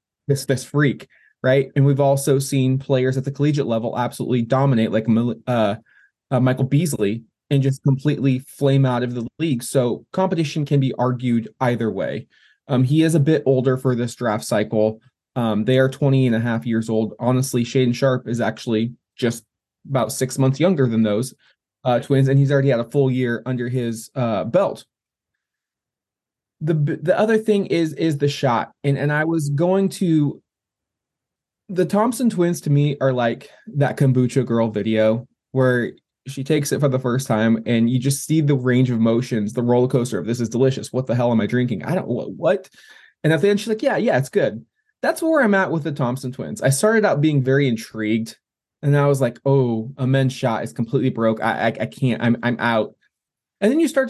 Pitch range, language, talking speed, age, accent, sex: 115-145 Hz, English, 205 wpm, 20-39, American, male